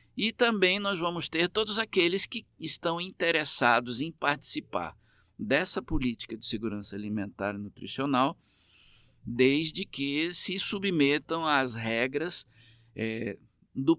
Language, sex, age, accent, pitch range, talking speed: Portuguese, male, 50-69, Brazilian, 110-155 Hz, 110 wpm